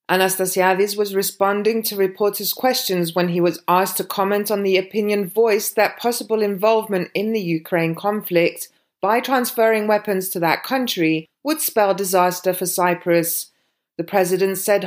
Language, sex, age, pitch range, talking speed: English, female, 30-49, 185-220 Hz, 150 wpm